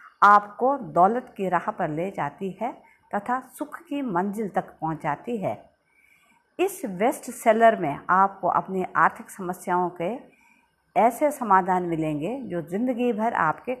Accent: native